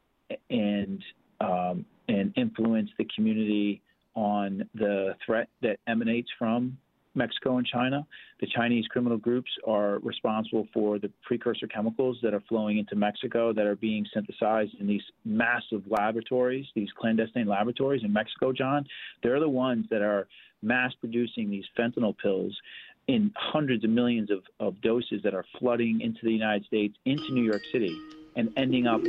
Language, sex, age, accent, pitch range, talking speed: English, male, 40-59, American, 105-125 Hz, 155 wpm